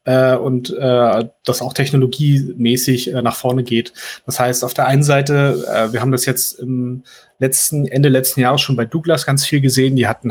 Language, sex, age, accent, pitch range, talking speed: German, male, 30-49, German, 125-145 Hz, 200 wpm